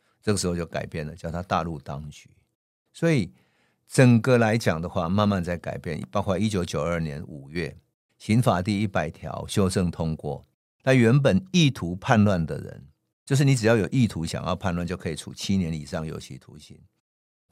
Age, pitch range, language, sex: 50-69, 85-110 Hz, Chinese, male